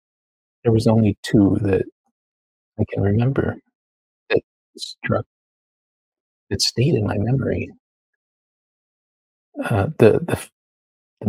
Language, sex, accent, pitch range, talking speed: English, male, American, 90-115 Hz, 100 wpm